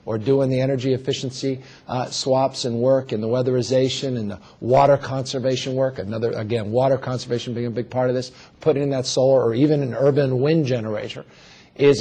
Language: English